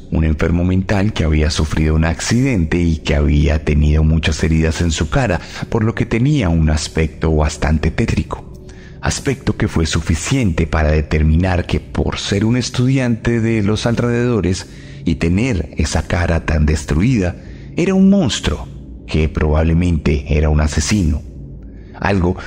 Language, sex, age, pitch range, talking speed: Spanish, male, 40-59, 80-100 Hz, 145 wpm